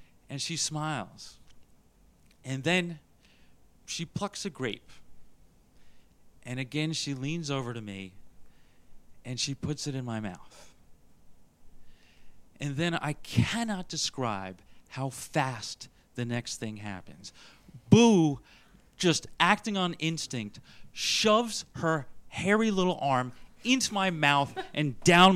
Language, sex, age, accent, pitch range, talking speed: English, male, 40-59, American, 140-210 Hz, 115 wpm